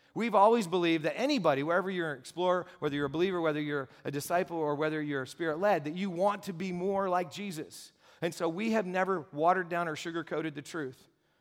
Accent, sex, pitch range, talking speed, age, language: American, male, 130-165 Hz, 210 wpm, 40-59, English